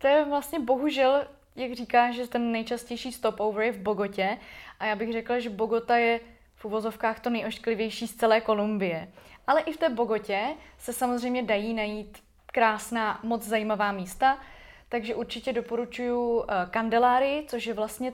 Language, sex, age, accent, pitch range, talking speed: Czech, female, 20-39, native, 195-240 Hz, 155 wpm